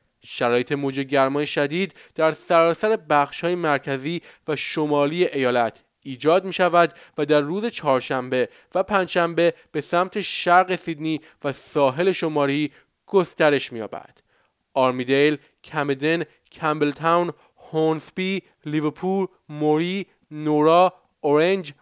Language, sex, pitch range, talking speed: Persian, male, 140-175 Hz, 100 wpm